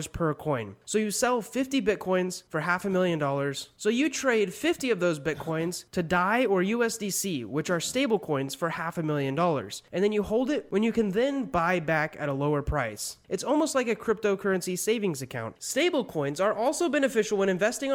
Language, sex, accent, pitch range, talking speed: English, male, American, 155-225 Hz, 205 wpm